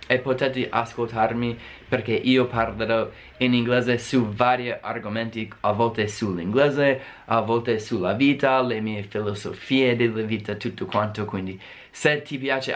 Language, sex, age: Italian, male, 20-39